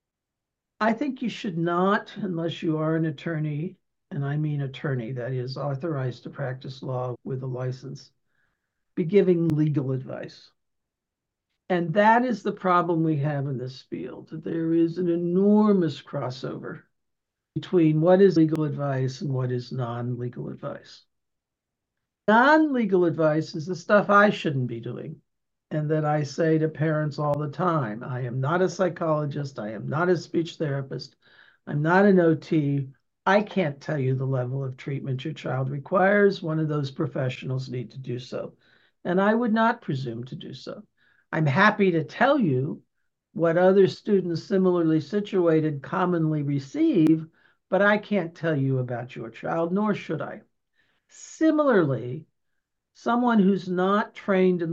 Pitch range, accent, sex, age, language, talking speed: 140-185 Hz, American, male, 60-79, English, 155 wpm